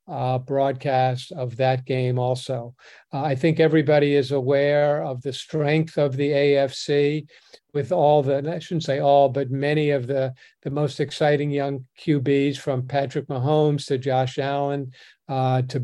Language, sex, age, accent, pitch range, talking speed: English, male, 50-69, American, 130-150 Hz, 160 wpm